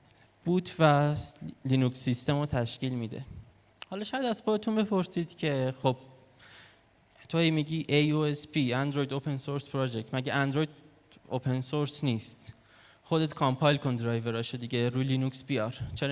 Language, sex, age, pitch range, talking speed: Persian, male, 20-39, 125-160 Hz, 145 wpm